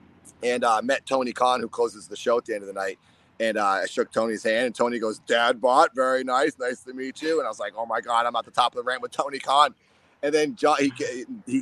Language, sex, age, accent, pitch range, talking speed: English, male, 30-49, American, 110-150 Hz, 280 wpm